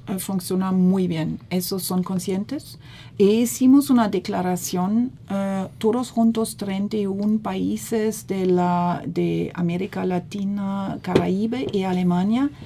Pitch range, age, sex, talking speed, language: 175-220 Hz, 50-69, female, 110 wpm, Spanish